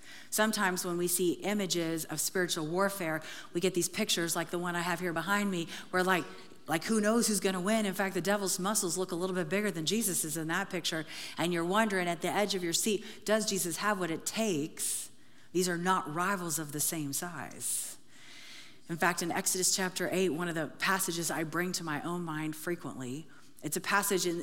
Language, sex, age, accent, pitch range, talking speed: English, female, 40-59, American, 150-185 Hz, 215 wpm